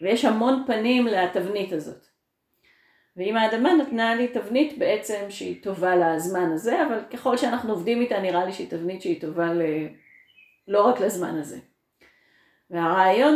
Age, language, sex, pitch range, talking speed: 40-59, Hebrew, female, 180-245 Hz, 145 wpm